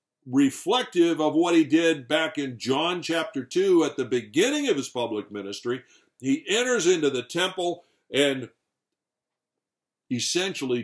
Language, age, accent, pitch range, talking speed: English, 60-79, American, 130-205 Hz, 135 wpm